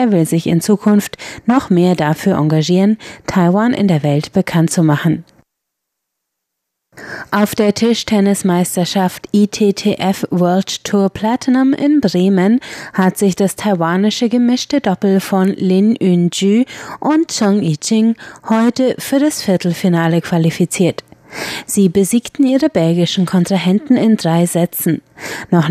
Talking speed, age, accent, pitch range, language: 120 wpm, 30-49, German, 175-220 Hz, German